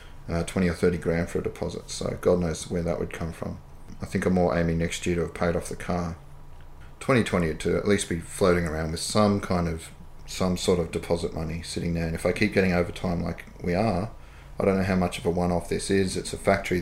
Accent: Australian